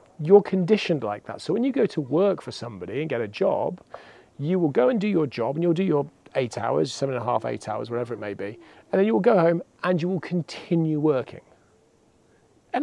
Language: English